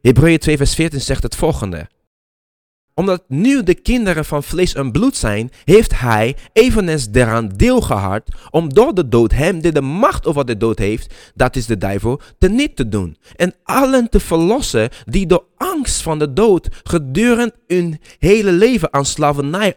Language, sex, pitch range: Dutch, male, 120-190 Hz